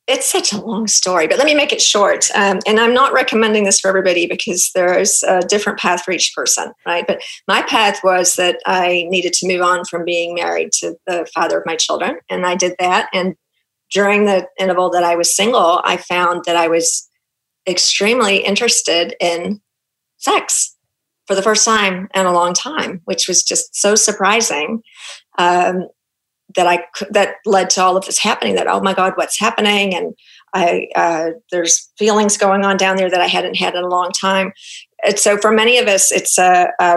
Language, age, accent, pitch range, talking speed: English, 40-59, American, 175-205 Hz, 200 wpm